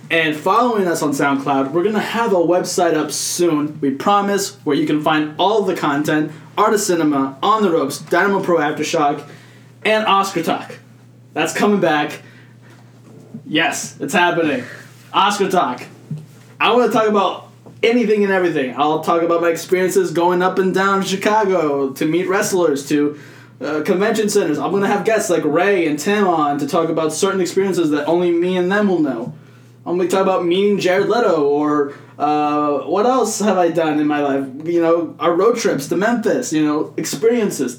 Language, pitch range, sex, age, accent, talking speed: English, 145-195 Hz, male, 20-39, American, 185 wpm